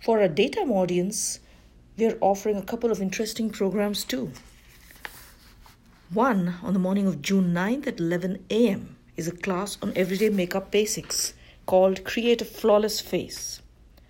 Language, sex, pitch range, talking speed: English, female, 175-225 Hz, 145 wpm